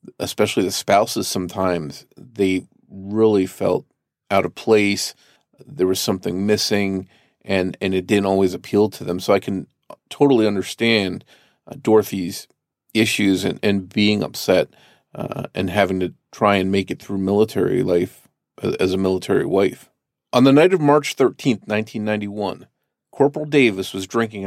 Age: 40-59